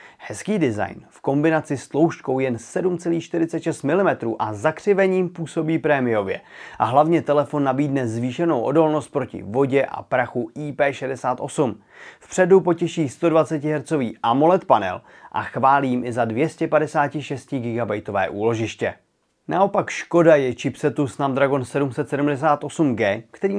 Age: 30-49